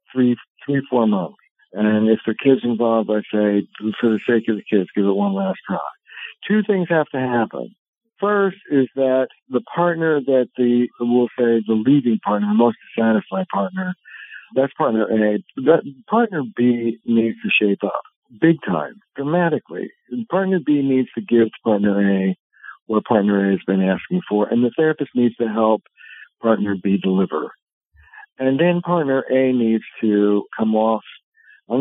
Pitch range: 105-150 Hz